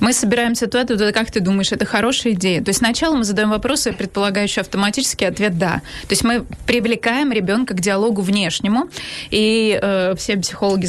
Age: 20-39